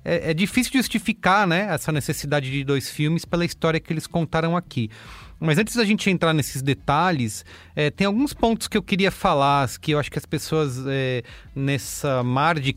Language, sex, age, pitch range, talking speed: English, male, 30-49, 135-180 Hz, 195 wpm